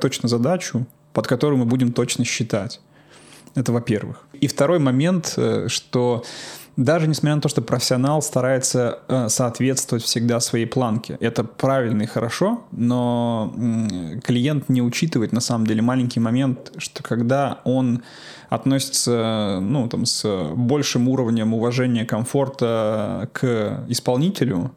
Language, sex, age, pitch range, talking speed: Russian, male, 20-39, 115-135 Hz, 125 wpm